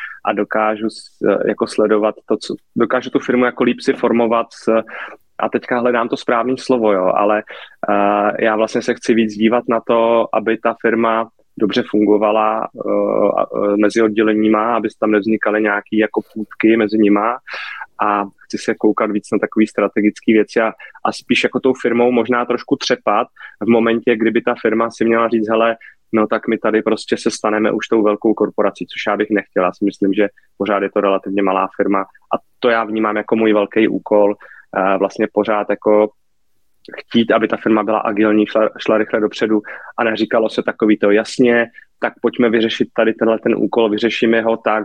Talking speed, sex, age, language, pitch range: 170 wpm, male, 20-39, Czech, 105-115 Hz